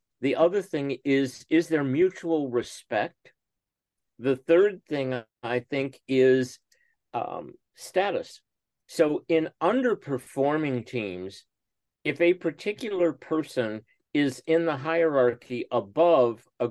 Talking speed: 110 wpm